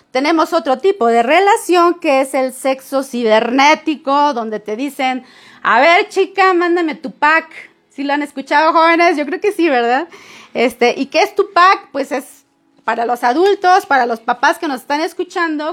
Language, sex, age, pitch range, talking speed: Spanish, female, 30-49, 240-335 Hz, 185 wpm